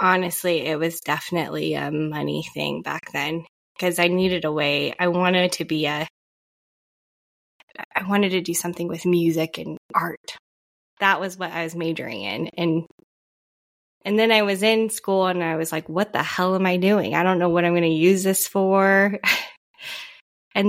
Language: English